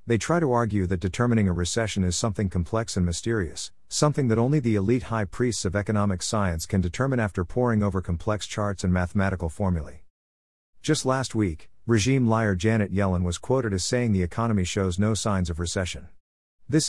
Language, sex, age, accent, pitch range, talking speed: English, male, 50-69, American, 90-115 Hz, 185 wpm